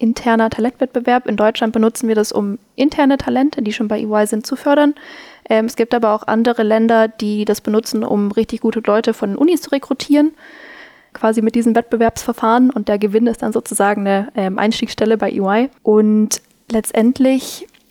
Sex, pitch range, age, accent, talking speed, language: female, 215-240 Hz, 10-29, German, 170 wpm, German